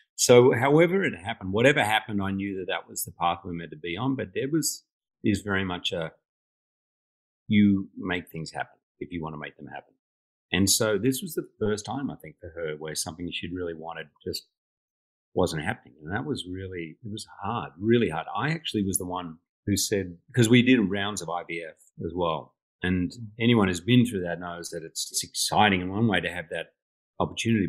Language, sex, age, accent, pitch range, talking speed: English, male, 40-59, Australian, 90-115 Hz, 210 wpm